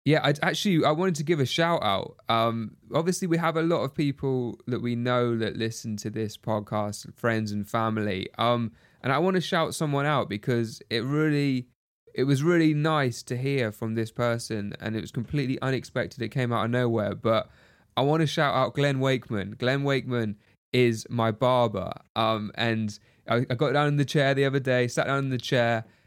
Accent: British